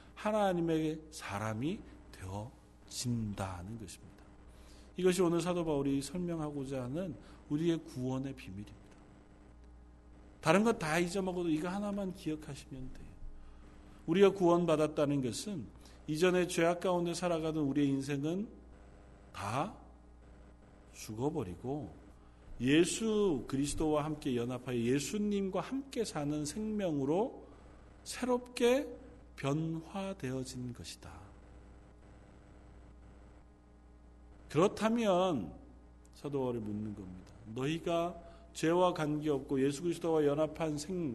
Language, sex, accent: Korean, male, native